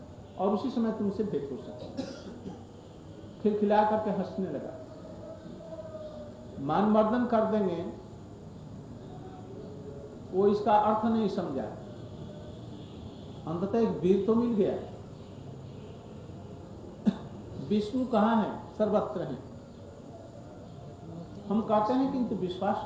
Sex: male